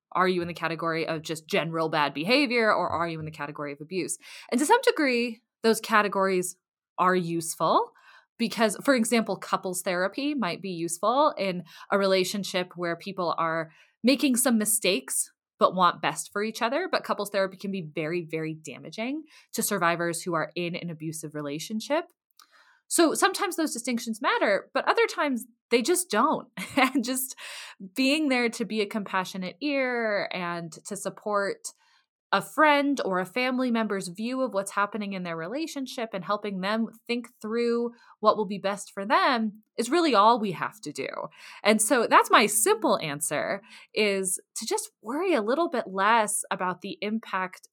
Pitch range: 175-255 Hz